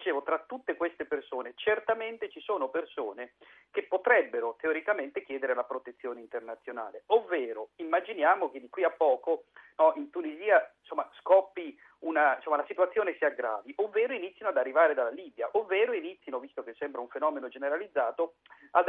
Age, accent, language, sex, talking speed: 50-69, native, Italian, male, 150 wpm